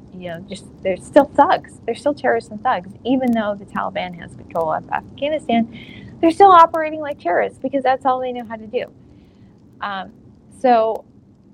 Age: 20-39